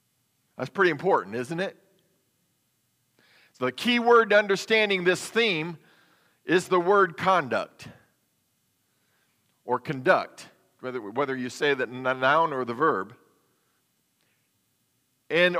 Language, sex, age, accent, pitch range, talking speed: English, male, 50-69, American, 160-215 Hz, 110 wpm